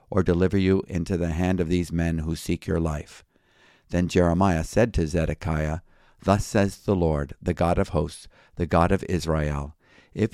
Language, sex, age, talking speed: English, male, 50-69, 180 wpm